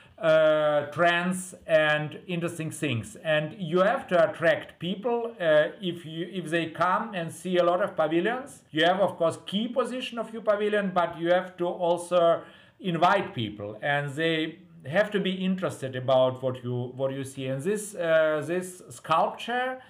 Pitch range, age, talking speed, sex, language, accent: 145-175 Hz, 50-69, 170 wpm, male, English, German